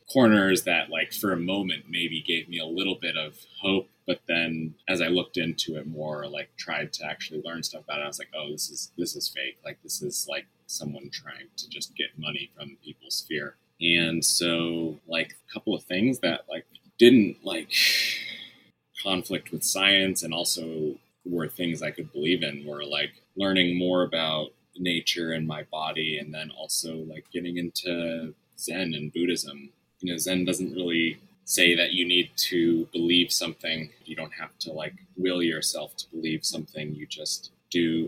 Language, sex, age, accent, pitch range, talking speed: English, male, 20-39, American, 75-85 Hz, 185 wpm